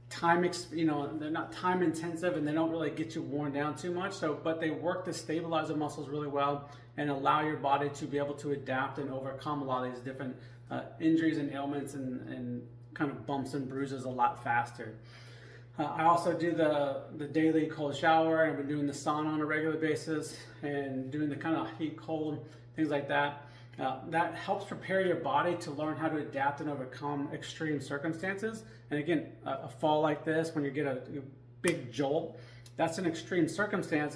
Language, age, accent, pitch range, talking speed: English, 30-49, American, 140-160 Hz, 210 wpm